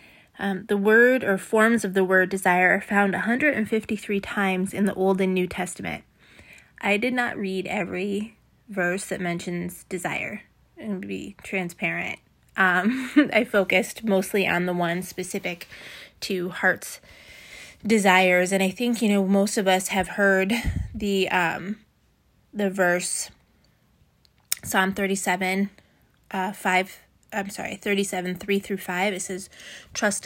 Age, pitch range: 20-39, 185-205 Hz